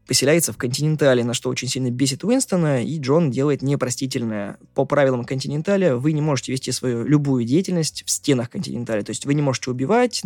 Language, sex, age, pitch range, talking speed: Russian, male, 20-39, 120-155 Hz, 185 wpm